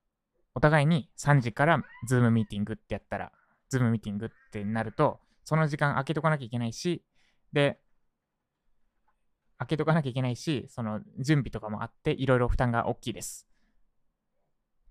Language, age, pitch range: Japanese, 20-39, 115-160 Hz